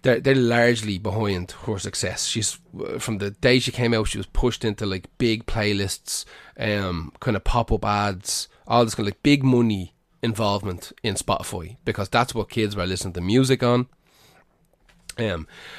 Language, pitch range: English, 95-115 Hz